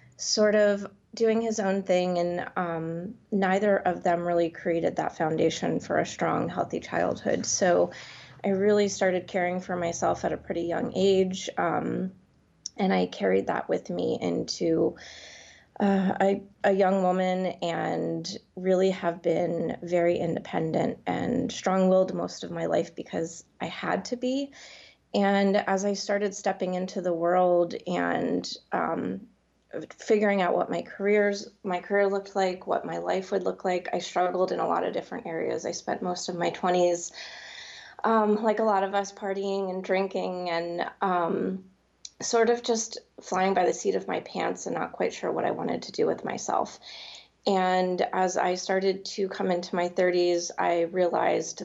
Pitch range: 175-200 Hz